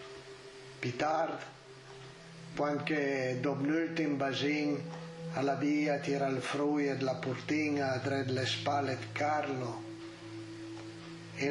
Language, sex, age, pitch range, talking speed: Italian, male, 60-79, 120-155 Hz, 105 wpm